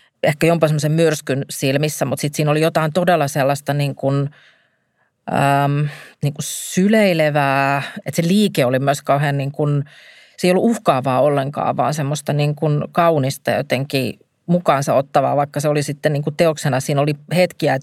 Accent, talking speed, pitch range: native, 160 wpm, 140-160 Hz